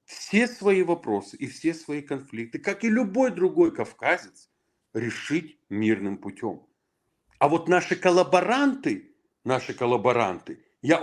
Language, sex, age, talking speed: Russian, male, 40-59, 115 wpm